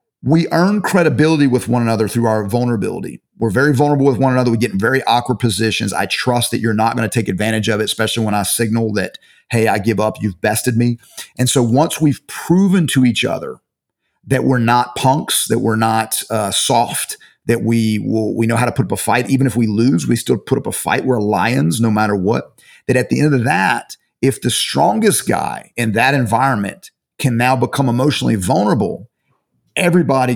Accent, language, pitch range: American, English, 115-135 Hz